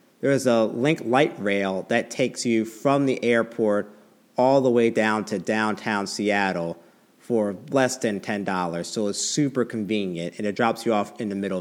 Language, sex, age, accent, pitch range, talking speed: English, male, 40-59, American, 105-140 Hz, 180 wpm